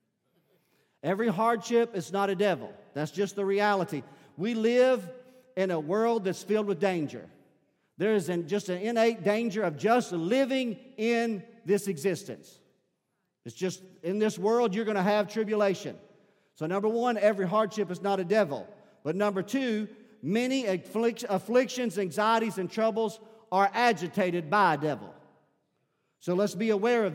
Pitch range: 190-230 Hz